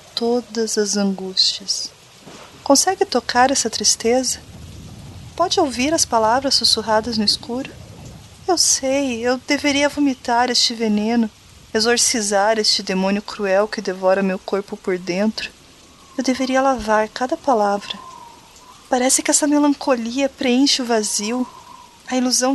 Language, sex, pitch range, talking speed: Portuguese, female, 205-255 Hz, 120 wpm